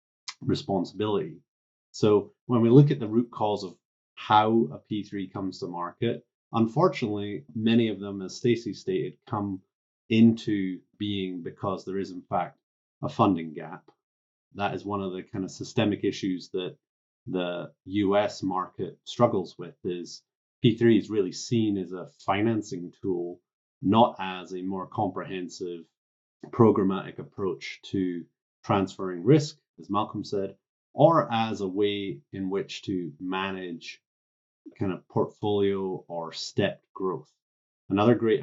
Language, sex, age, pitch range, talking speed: English, male, 30-49, 90-105 Hz, 135 wpm